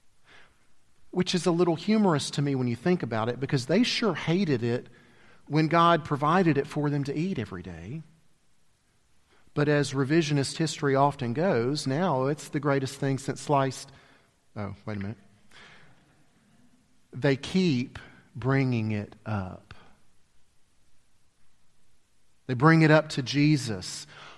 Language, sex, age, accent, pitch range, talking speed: English, male, 40-59, American, 125-195 Hz, 135 wpm